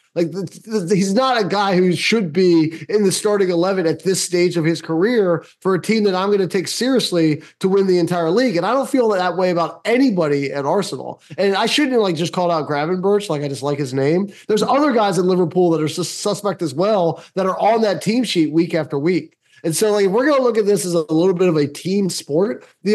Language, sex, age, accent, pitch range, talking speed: English, male, 20-39, American, 150-195 Hz, 260 wpm